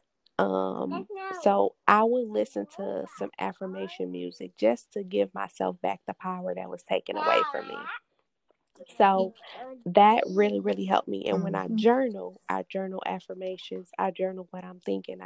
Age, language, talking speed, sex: 20-39, English, 155 wpm, female